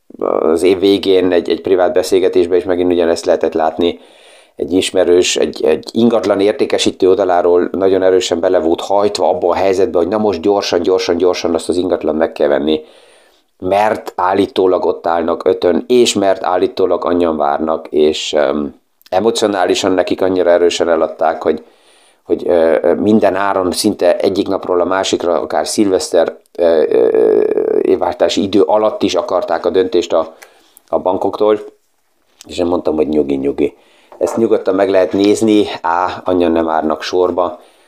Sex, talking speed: male, 145 wpm